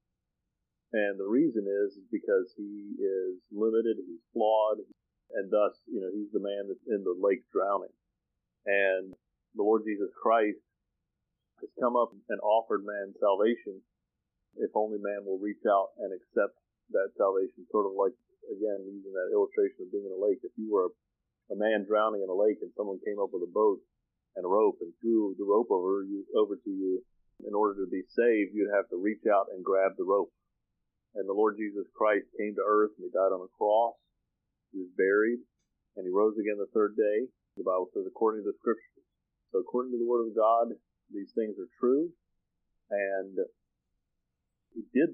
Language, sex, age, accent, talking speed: English, male, 40-59, American, 190 wpm